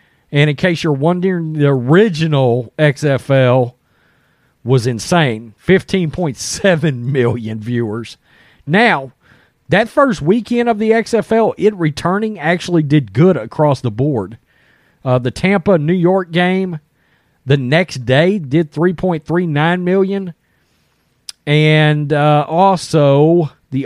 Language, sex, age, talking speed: English, male, 40-59, 110 wpm